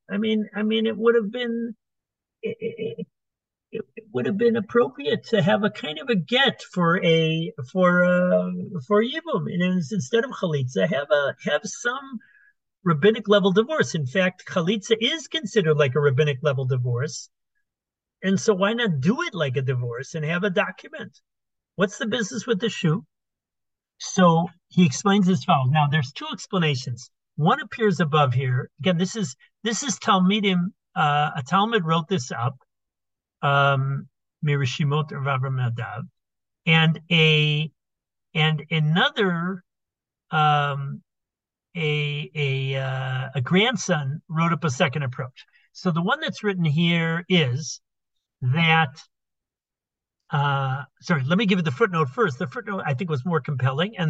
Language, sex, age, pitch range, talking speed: English, male, 50-69, 145-205 Hz, 150 wpm